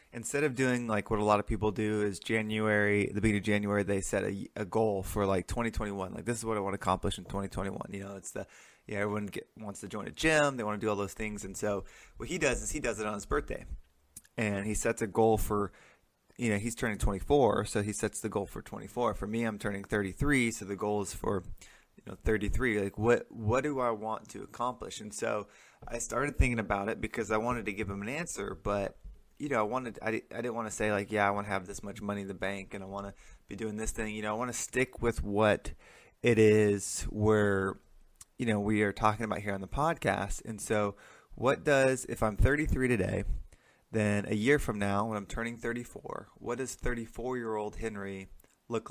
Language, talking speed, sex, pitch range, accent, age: English, 240 wpm, male, 100-115 Hz, American, 20-39